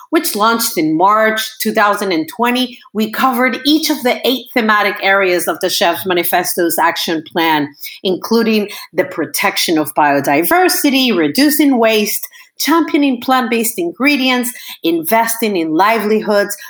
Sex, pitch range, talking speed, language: female, 185-270 Hz, 115 wpm, English